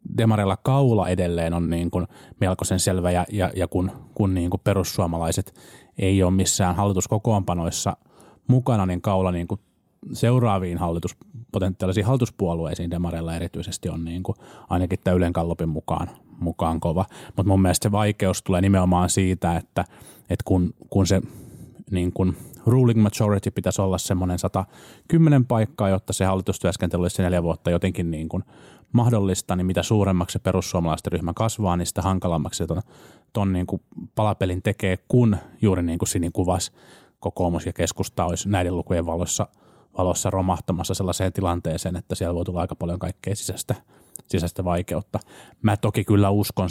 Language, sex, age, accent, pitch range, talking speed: Finnish, male, 30-49, native, 85-100 Hz, 150 wpm